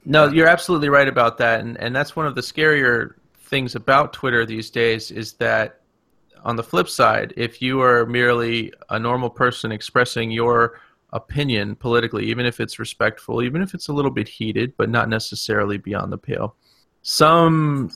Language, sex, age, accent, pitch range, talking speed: English, male, 30-49, American, 110-130 Hz, 175 wpm